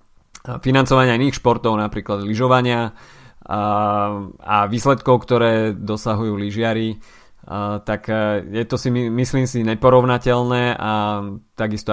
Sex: male